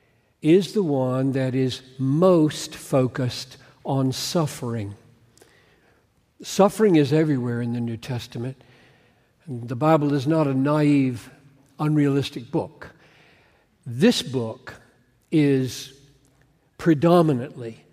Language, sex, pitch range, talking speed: English, male, 125-155 Hz, 95 wpm